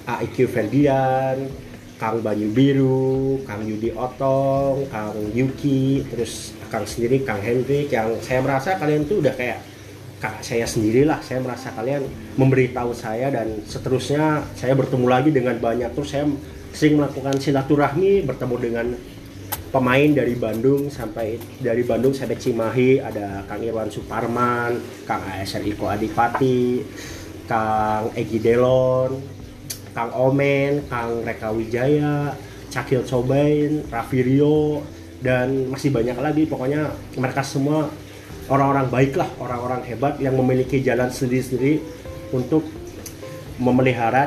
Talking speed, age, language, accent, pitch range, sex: 120 wpm, 30-49, Indonesian, native, 115-135 Hz, male